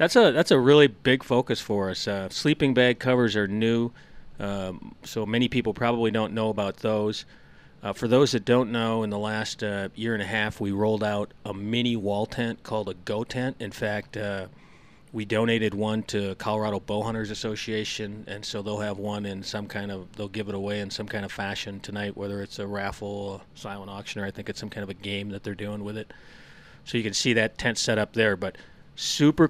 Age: 30-49